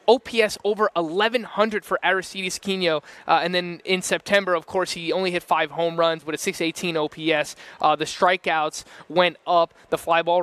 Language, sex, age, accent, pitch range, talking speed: English, male, 20-39, American, 155-190 Hz, 180 wpm